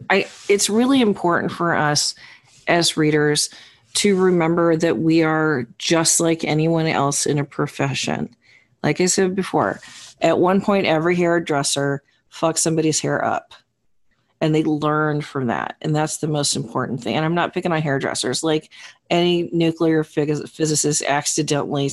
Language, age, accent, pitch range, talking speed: English, 40-59, American, 145-180 Hz, 150 wpm